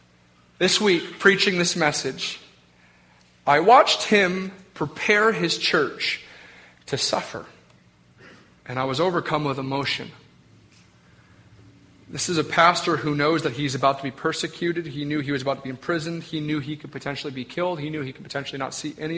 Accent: American